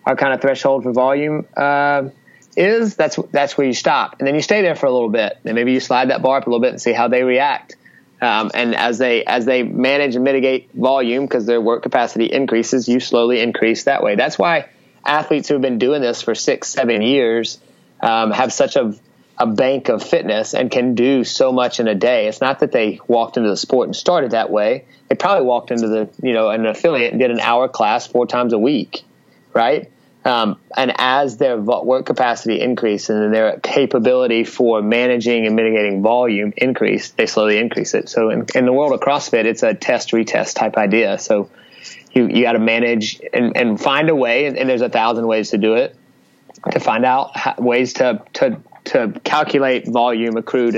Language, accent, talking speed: English, American, 210 wpm